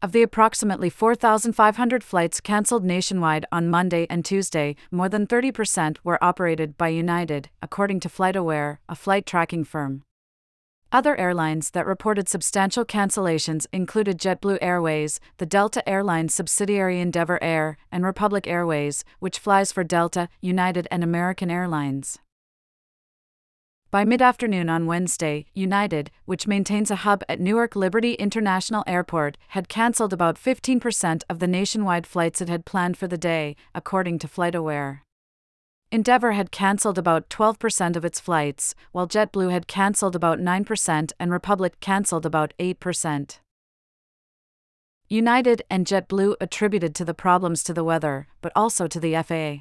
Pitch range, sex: 165-200 Hz, female